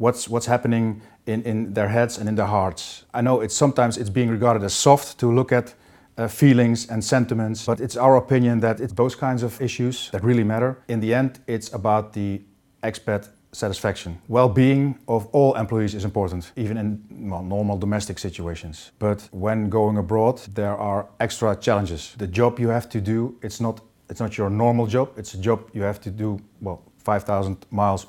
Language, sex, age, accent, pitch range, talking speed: English, male, 40-59, Dutch, 100-120 Hz, 195 wpm